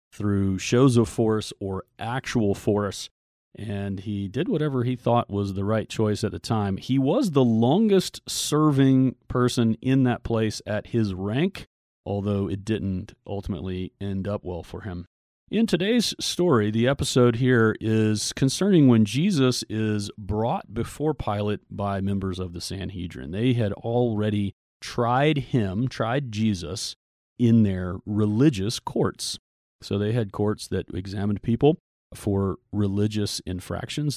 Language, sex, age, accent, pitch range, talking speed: English, male, 40-59, American, 100-125 Hz, 140 wpm